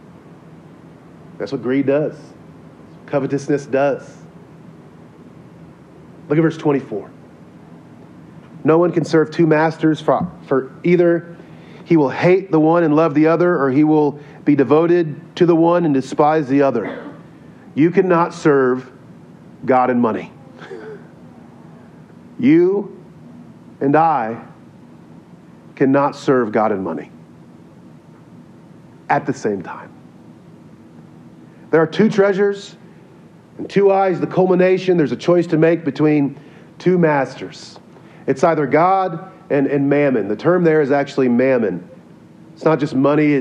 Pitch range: 135-165 Hz